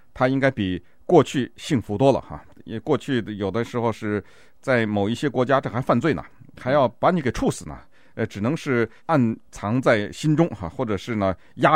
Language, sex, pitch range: Chinese, male, 110-155 Hz